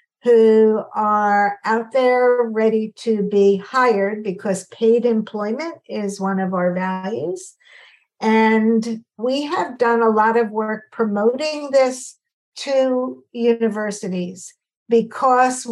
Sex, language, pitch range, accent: female, English, 205-245 Hz, American